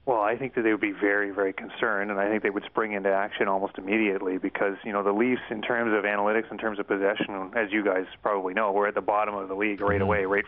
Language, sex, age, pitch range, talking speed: English, male, 30-49, 100-115 Hz, 275 wpm